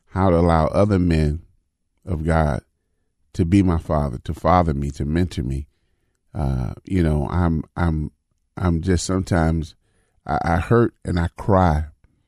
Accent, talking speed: American, 150 wpm